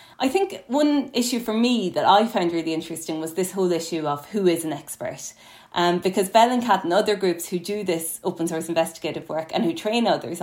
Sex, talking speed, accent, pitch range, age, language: female, 235 wpm, Irish, 165-205 Hz, 20-39, English